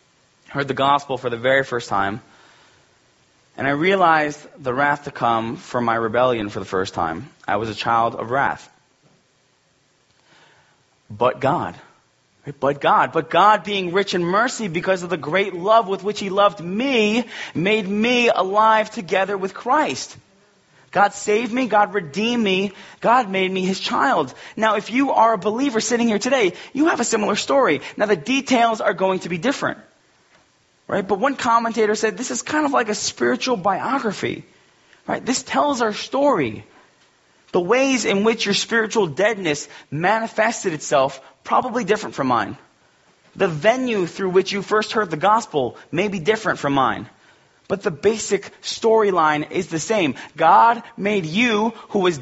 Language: English